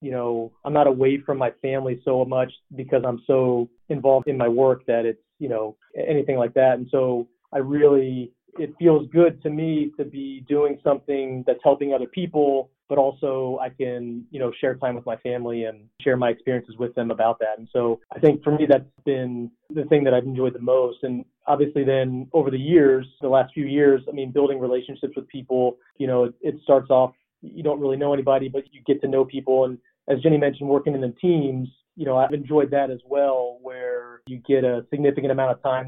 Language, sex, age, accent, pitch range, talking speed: English, male, 30-49, American, 120-140 Hz, 220 wpm